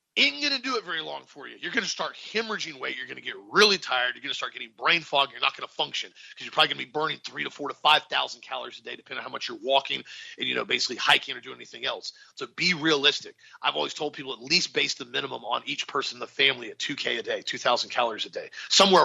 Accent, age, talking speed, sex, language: American, 40-59, 295 wpm, male, English